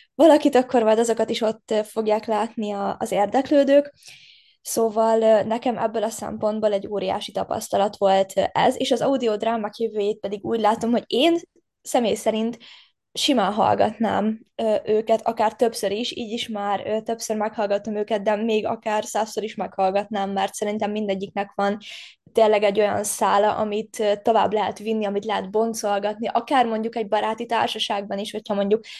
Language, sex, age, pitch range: Hungarian, female, 20-39, 210-235 Hz